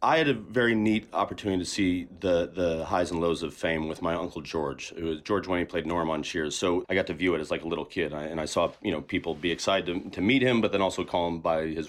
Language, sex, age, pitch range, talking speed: English, male, 30-49, 80-100 Hz, 300 wpm